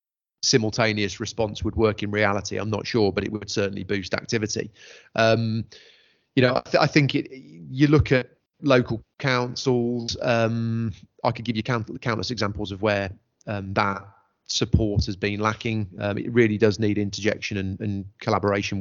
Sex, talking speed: male, 170 wpm